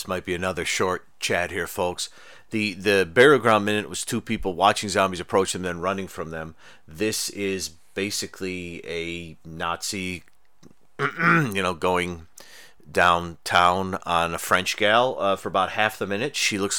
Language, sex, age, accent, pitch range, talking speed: English, male, 40-59, American, 90-110 Hz, 160 wpm